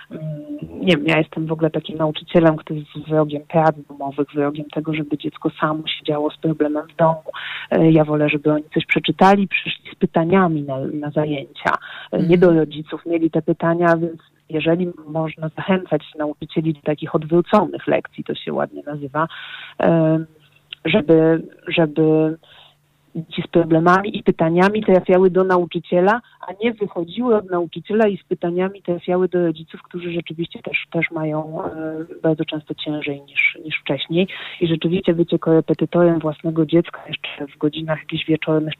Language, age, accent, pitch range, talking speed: Polish, 30-49, native, 155-180 Hz, 150 wpm